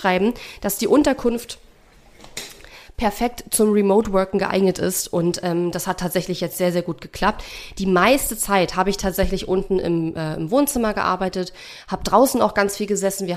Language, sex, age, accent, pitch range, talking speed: German, female, 30-49, German, 170-200 Hz, 165 wpm